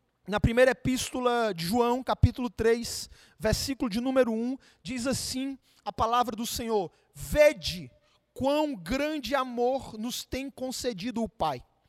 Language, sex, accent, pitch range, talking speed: Portuguese, male, Brazilian, 255-310 Hz, 130 wpm